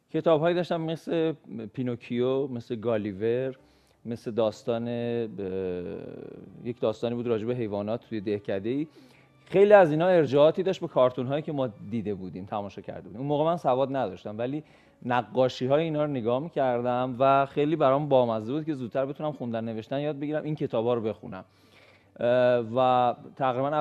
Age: 40-59